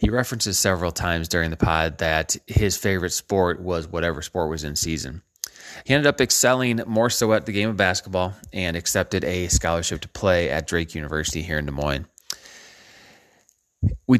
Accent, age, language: American, 30-49, English